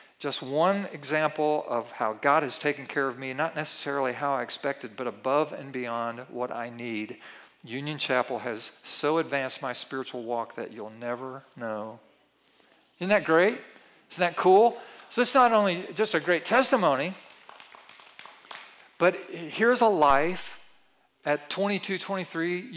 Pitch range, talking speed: 140-180 Hz, 150 wpm